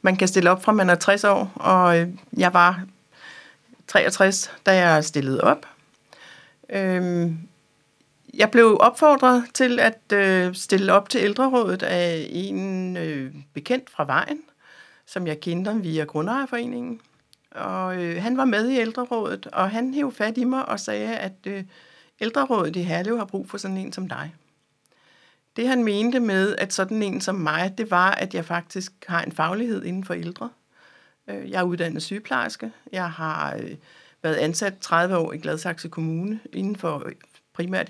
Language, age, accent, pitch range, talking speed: Danish, 60-79, native, 160-210 Hz, 155 wpm